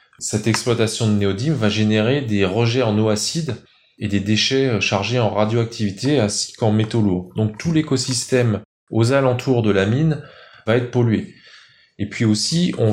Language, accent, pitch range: English, French, 100-125 Hz